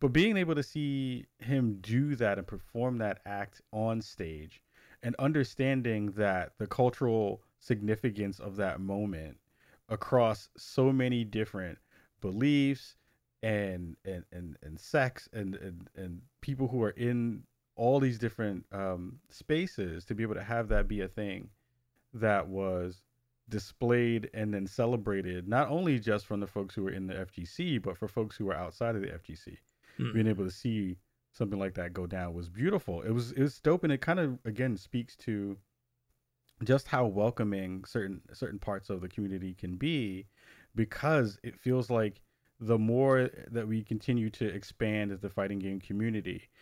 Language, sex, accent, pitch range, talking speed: English, male, American, 95-125 Hz, 165 wpm